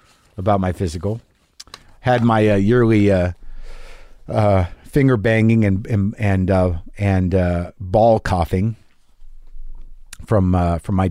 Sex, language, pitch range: male, English, 100-145 Hz